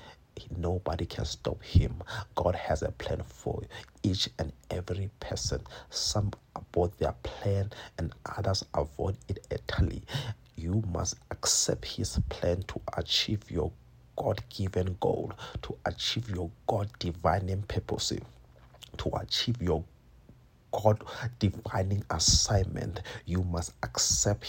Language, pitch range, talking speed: English, 90-110 Hz, 115 wpm